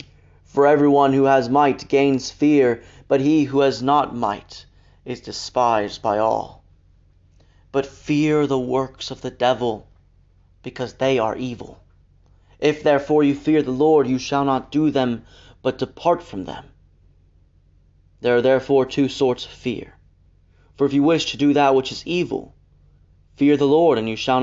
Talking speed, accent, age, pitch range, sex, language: 160 wpm, American, 30-49, 90-145 Hz, male, English